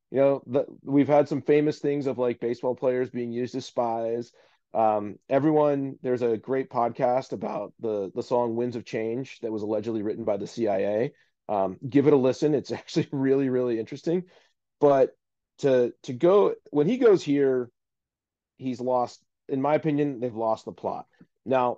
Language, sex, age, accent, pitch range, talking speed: English, male, 30-49, American, 115-145 Hz, 180 wpm